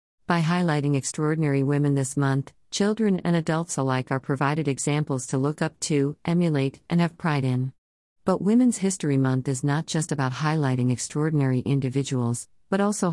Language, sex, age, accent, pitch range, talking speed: English, female, 50-69, American, 130-155 Hz, 160 wpm